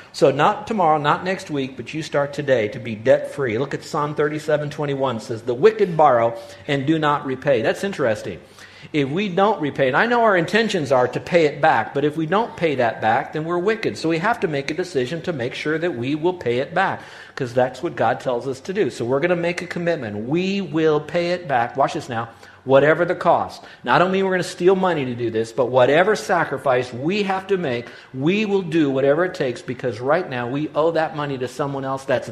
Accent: American